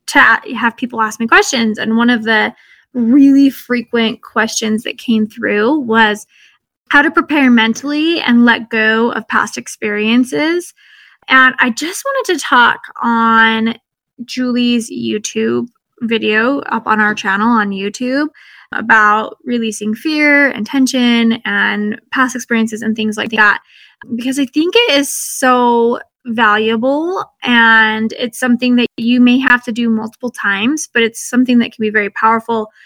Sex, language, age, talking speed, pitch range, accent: female, English, 10-29, 150 wpm, 220-260 Hz, American